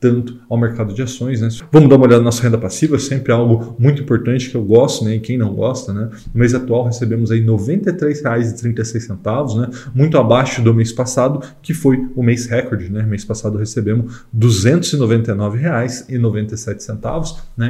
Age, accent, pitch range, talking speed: 20-39, Brazilian, 110-130 Hz, 175 wpm